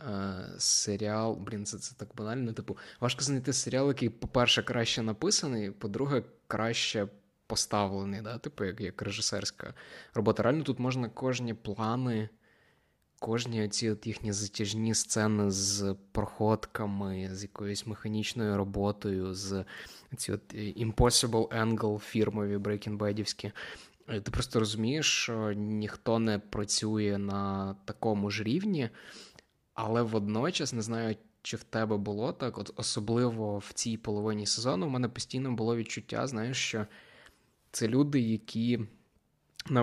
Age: 20-39